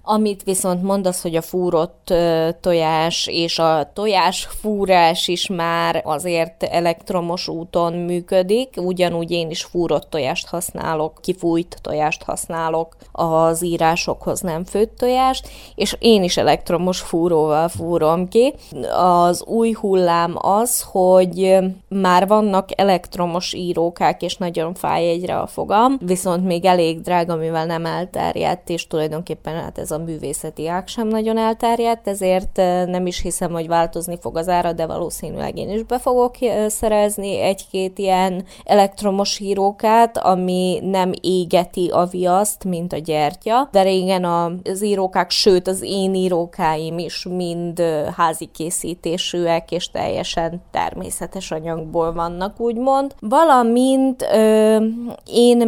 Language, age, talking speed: Hungarian, 20-39, 125 wpm